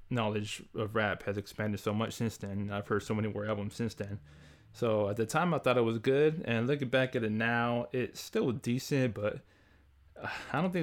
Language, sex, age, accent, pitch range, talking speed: English, male, 20-39, American, 100-120 Hz, 215 wpm